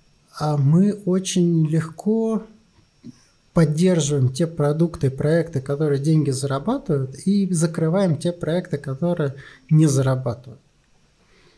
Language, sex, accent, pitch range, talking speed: Russian, male, native, 140-180 Hz, 95 wpm